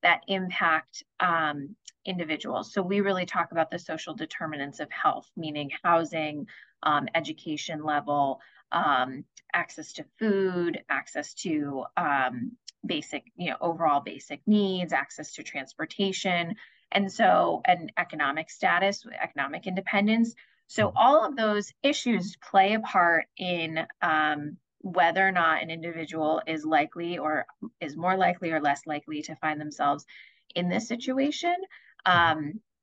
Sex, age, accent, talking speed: female, 30-49, American, 135 wpm